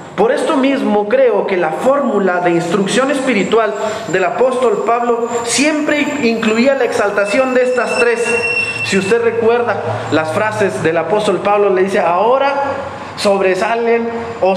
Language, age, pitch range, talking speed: Spanish, 40-59, 180-245 Hz, 135 wpm